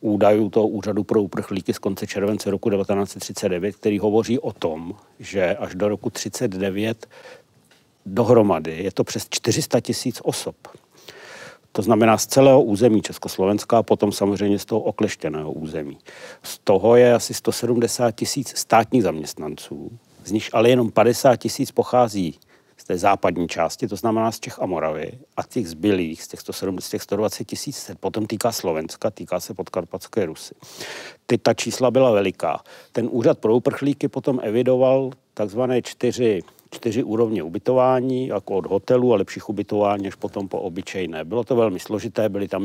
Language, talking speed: Czech, 155 wpm